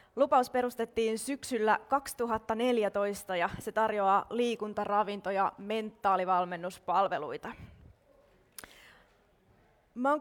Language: Finnish